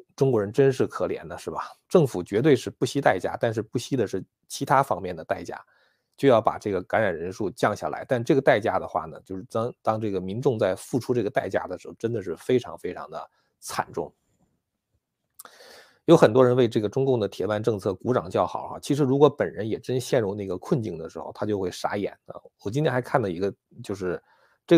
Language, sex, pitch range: Chinese, male, 100-130 Hz